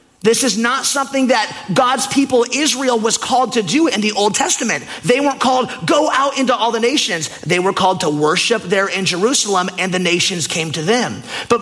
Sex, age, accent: male, 30-49, American